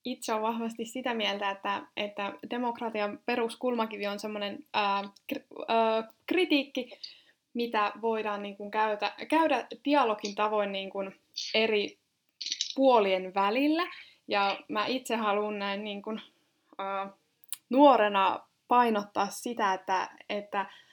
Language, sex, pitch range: Finnish, female, 200-250 Hz